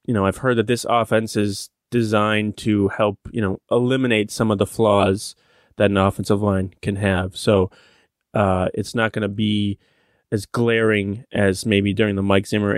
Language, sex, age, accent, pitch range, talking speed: English, male, 20-39, American, 100-115 Hz, 185 wpm